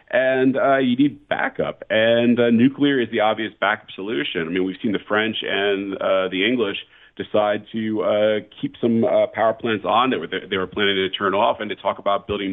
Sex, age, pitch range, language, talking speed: male, 40-59, 100-125 Hz, English, 210 wpm